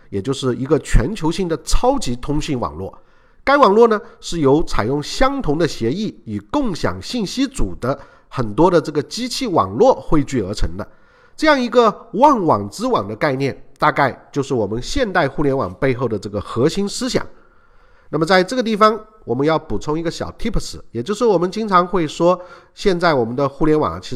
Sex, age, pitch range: male, 50-69, 135-225 Hz